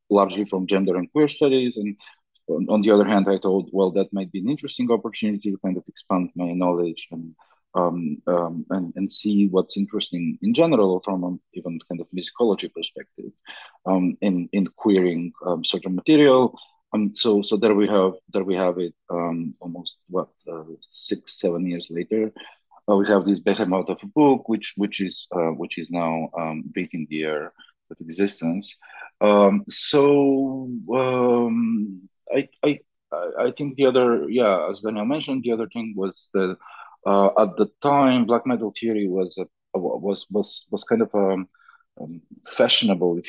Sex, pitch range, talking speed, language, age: male, 90-110 Hz, 170 wpm, English, 40-59